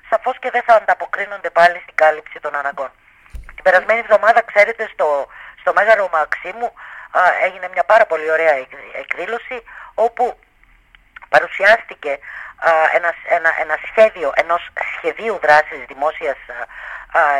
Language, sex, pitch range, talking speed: Greek, female, 155-210 Hz, 130 wpm